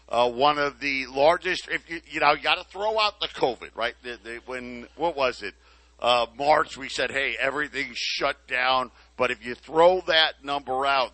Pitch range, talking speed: 120-165 Hz, 205 wpm